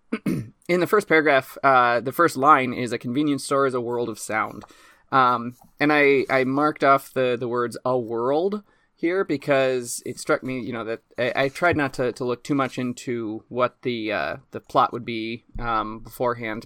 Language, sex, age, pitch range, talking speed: English, male, 20-39, 115-135 Hz, 200 wpm